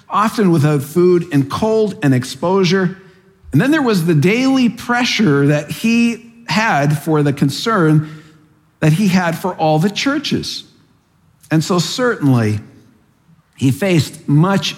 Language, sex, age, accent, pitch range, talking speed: English, male, 50-69, American, 140-190 Hz, 135 wpm